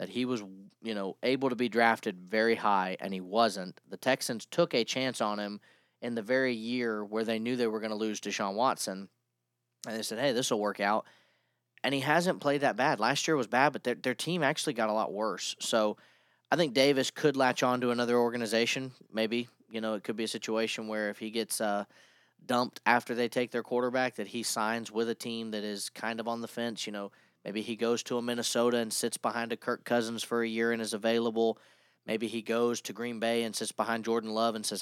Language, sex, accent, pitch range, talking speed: English, male, American, 100-120 Hz, 235 wpm